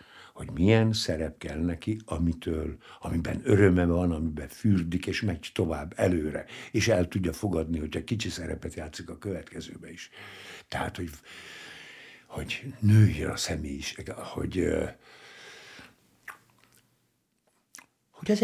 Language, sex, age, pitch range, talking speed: Hungarian, male, 60-79, 80-120 Hz, 115 wpm